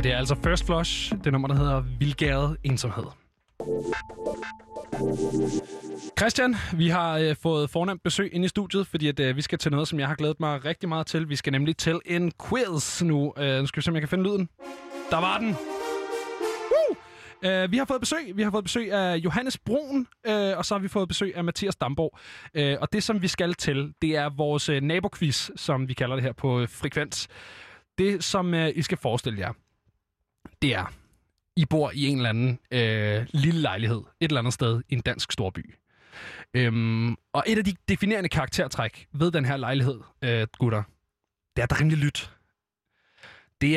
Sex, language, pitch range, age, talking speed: male, Danish, 120-170 Hz, 20-39, 200 wpm